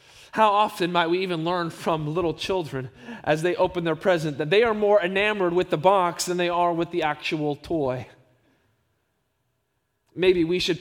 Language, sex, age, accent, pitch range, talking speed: English, male, 20-39, American, 130-185 Hz, 180 wpm